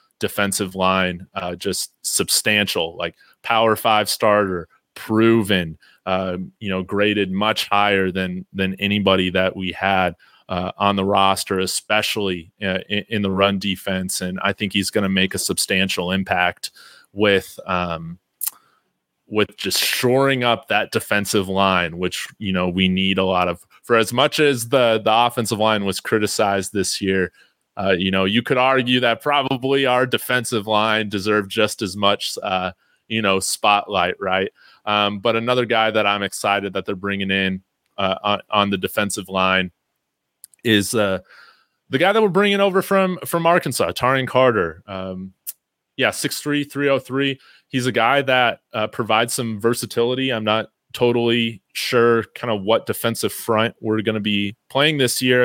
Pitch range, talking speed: 95-120 Hz, 160 wpm